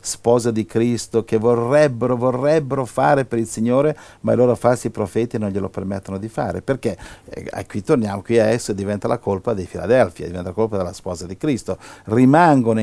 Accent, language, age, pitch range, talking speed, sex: native, Italian, 50-69, 95-115 Hz, 190 wpm, male